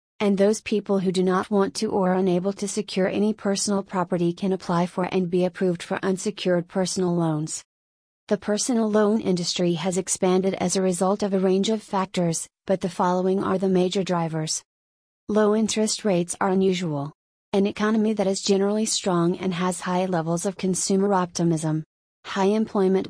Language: English